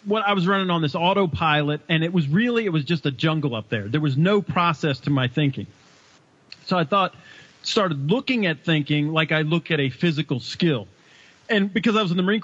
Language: English